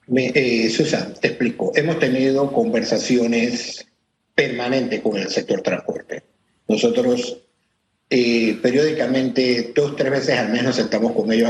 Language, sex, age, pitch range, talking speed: Spanish, male, 50-69, 115-140 Hz, 130 wpm